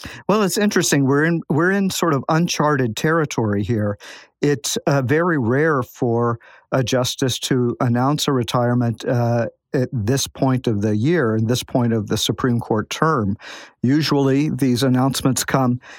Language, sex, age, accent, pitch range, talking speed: English, male, 50-69, American, 120-145 Hz, 160 wpm